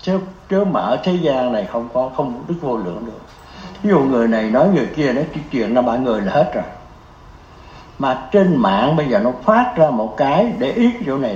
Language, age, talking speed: Vietnamese, 60-79, 220 wpm